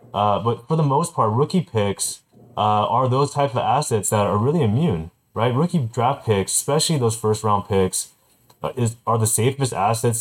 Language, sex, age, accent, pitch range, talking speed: English, male, 30-49, American, 105-125 Hz, 190 wpm